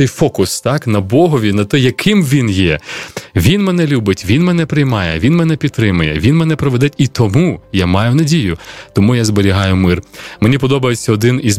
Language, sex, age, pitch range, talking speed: Ukrainian, male, 20-39, 100-145 Hz, 175 wpm